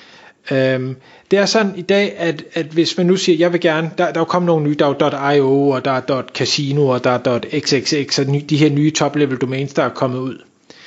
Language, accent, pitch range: Danish, native, 145-185 Hz